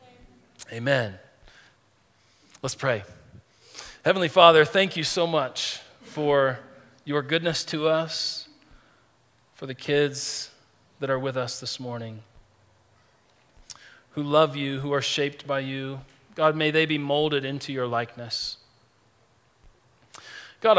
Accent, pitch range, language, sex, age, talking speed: American, 125-165 Hz, English, male, 40-59, 115 wpm